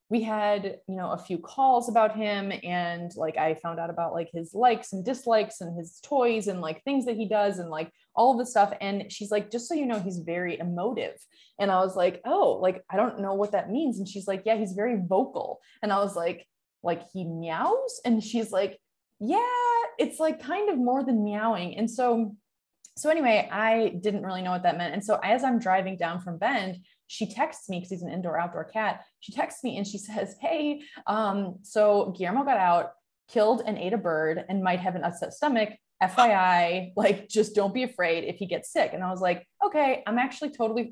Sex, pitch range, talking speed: female, 180-230 Hz, 220 wpm